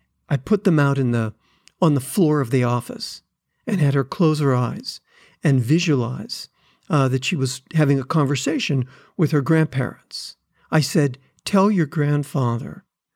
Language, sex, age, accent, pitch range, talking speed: English, male, 50-69, American, 135-170 Hz, 160 wpm